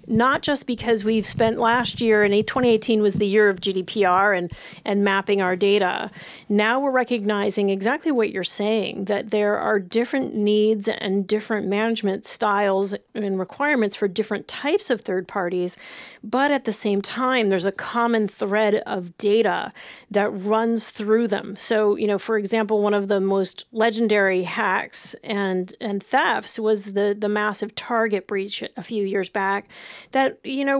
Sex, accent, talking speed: female, American, 165 wpm